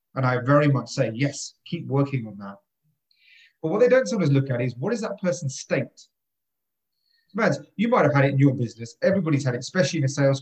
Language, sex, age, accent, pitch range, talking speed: English, male, 30-49, British, 130-175 Hz, 225 wpm